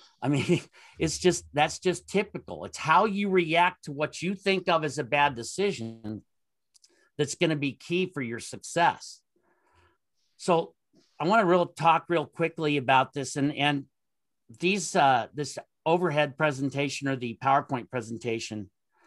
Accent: American